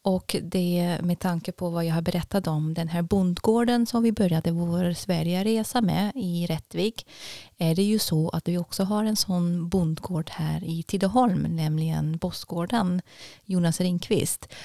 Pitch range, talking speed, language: 160-185 Hz, 165 wpm, Swedish